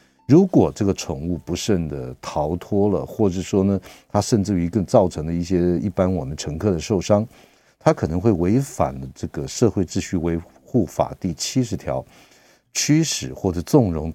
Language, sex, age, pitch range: Chinese, male, 50-69, 80-100 Hz